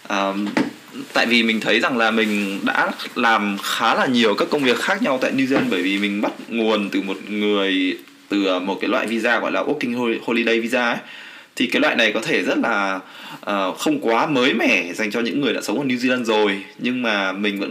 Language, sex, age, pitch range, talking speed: Vietnamese, male, 20-39, 100-130 Hz, 215 wpm